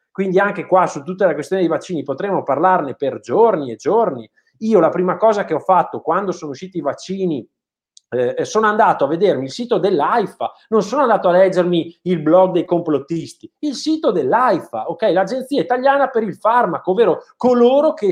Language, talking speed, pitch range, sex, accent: Italian, 185 wpm, 165-245 Hz, male, native